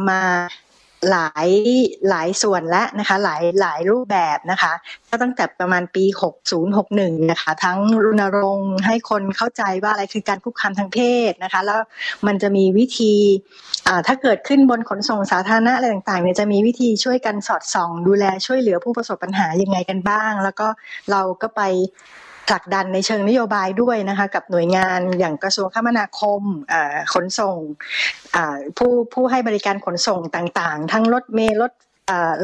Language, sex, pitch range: Thai, female, 185-230 Hz